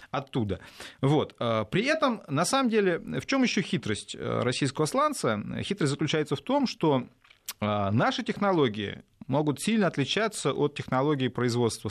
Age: 30-49